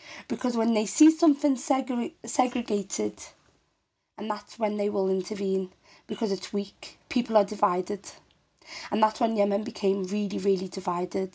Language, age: English, 20-39